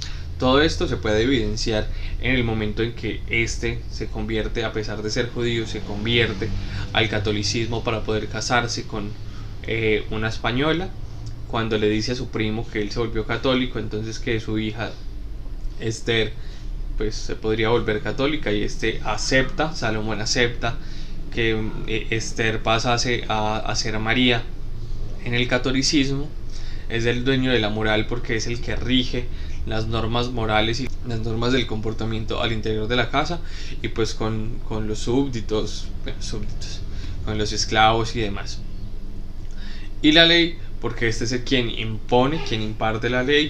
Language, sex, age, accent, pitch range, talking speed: Spanish, male, 10-29, Colombian, 105-120 Hz, 160 wpm